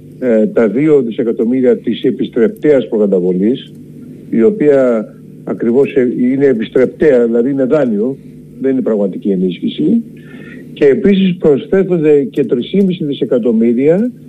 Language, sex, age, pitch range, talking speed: Greek, male, 50-69, 135-200 Hz, 100 wpm